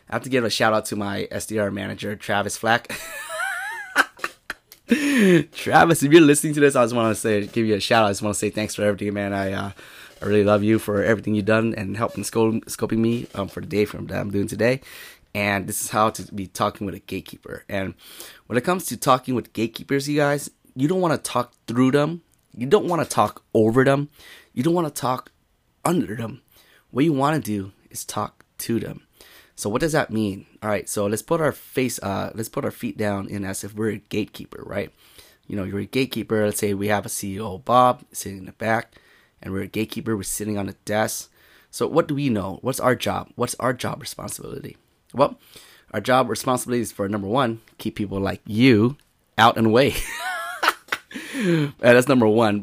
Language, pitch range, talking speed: English, 105-130 Hz, 215 wpm